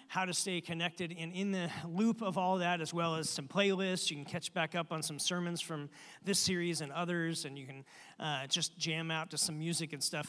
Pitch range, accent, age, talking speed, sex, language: 160-185 Hz, American, 40-59, 240 wpm, male, English